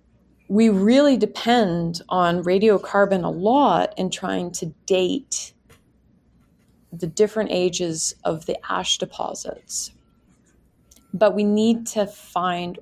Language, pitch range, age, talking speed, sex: English, 165-205 Hz, 30-49, 110 wpm, female